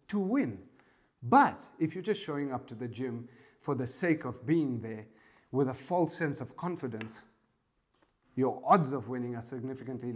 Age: 40-59